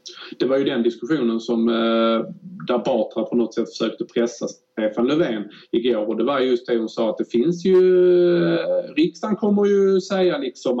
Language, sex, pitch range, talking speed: Swedish, male, 115-180 Hz, 195 wpm